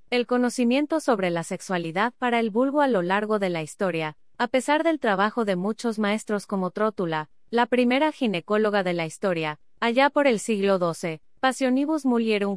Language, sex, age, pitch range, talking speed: Spanish, female, 30-49, 180-250 Hz, 170 wpm